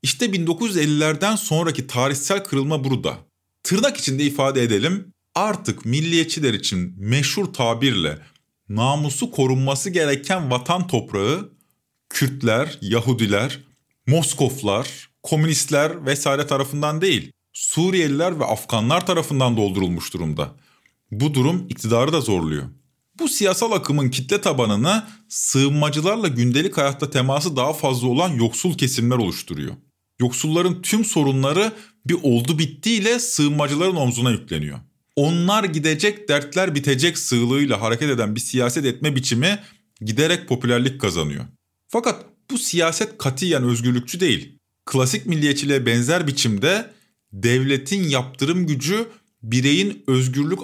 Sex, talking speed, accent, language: male, 110 wpm, native, Turkish